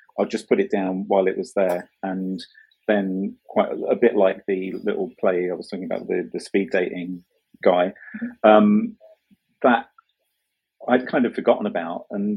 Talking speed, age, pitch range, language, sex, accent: 175 wpm, 40-59, 95-145 Hz, English, male, British